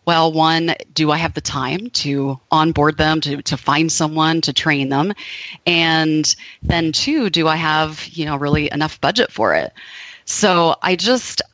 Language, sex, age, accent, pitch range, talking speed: English, female, 30-49, American, 140-165 Hz, 170 wpm